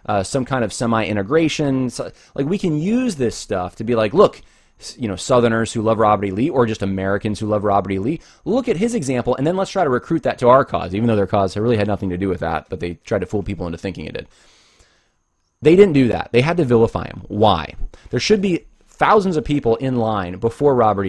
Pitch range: 100-145 Hz